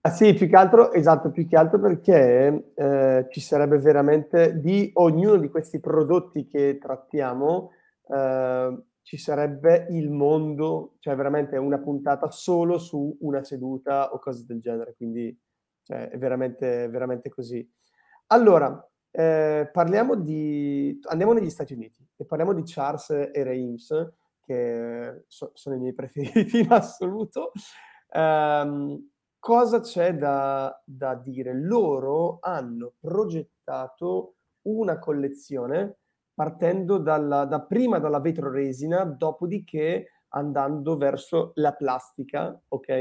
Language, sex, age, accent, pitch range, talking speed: Italian, male, 30-49, native, 135-175 Hz, 125 wpm